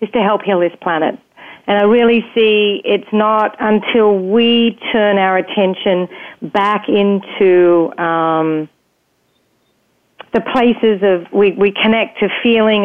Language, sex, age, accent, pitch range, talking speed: English, female, 40-59, Australian, 175-210 Hz, 130 wpm